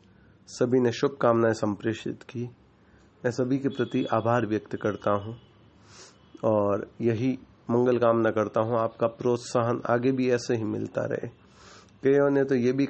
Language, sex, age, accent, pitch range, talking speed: Hindi, male, 30-49, native, 110-135 Hz, 150 wpm